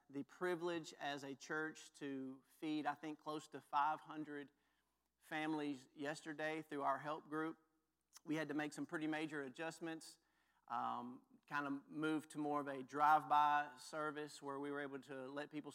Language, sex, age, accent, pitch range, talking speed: English, male, 40-59, American, 140-155 Hz, 165 wpm